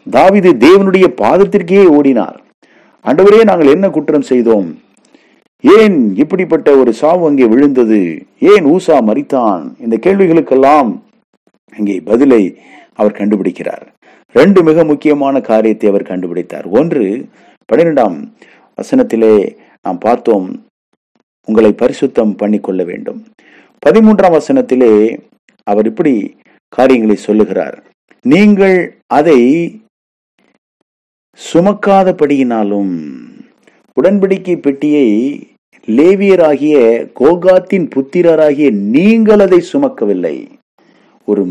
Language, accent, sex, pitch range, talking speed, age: English, Indian, male, 125-205 Hz, 80 wpm, 50-69